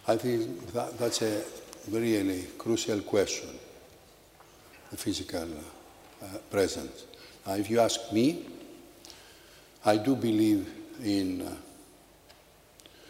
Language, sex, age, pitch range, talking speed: English, male, 60-79, 100-160 Hz, 105 wpm